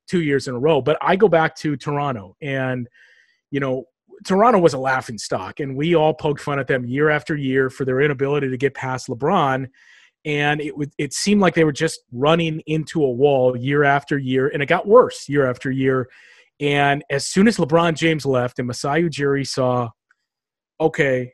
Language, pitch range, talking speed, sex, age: English, 130-165 Hz, 200 wpm, male, 30-49